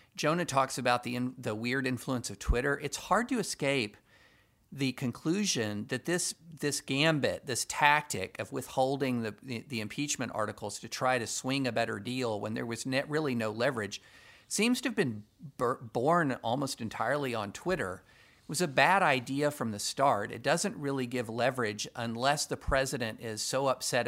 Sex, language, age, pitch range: male, English, 50-69, 115-150 Hz